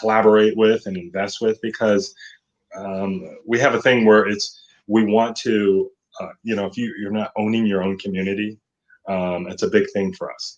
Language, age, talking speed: English, 30-49, 185 wpm